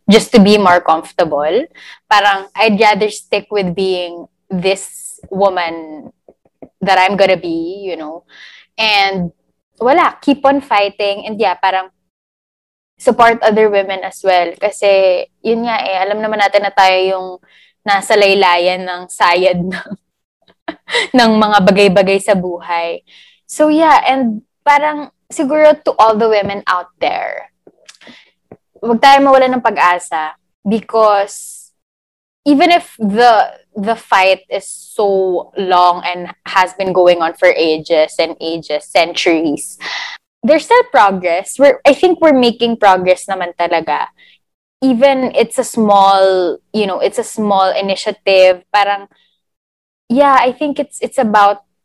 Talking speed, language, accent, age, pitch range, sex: 130 wpm, English, Filipino, 20-39, 185-235 Hz, female